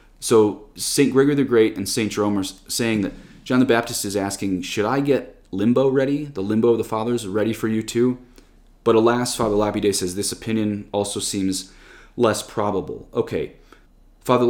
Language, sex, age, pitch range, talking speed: English, male, 30-49, 100-125 Hz, 180 wpm